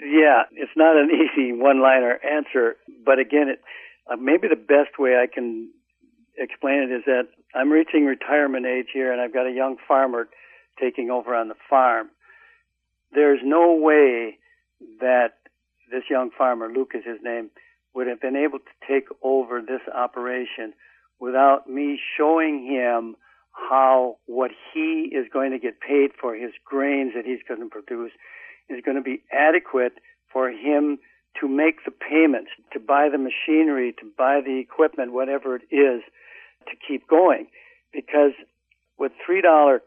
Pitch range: 130-155 Hz